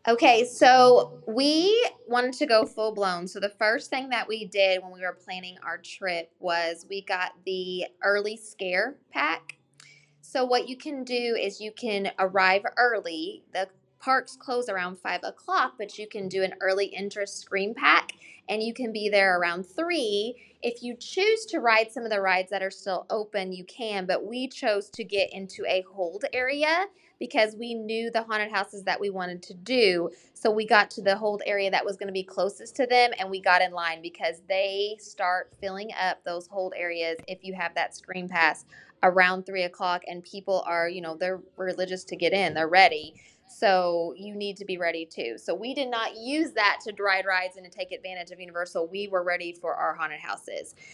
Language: English